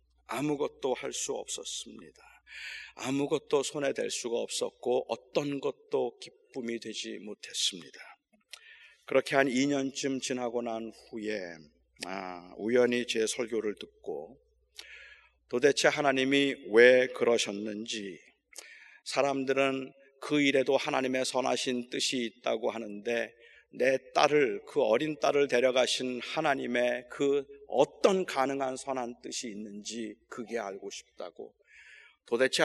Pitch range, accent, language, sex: 115-155 Hz, native, Korean, male